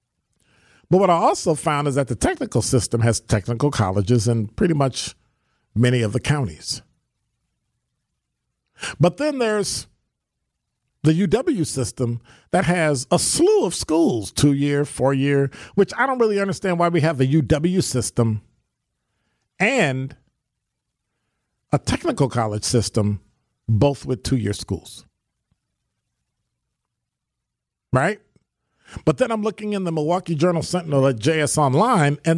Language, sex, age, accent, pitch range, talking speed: English, male, 50-69, American, 120-175 Hz, 130 wpm